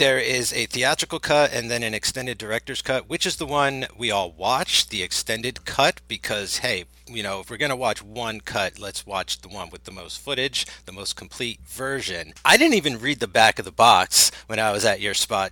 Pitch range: 110-145 Hz